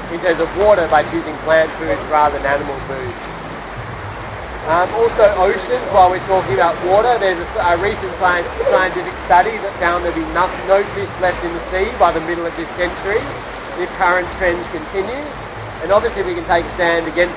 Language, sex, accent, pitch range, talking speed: English, male, Australian, 155-180 Hz, 195 wpm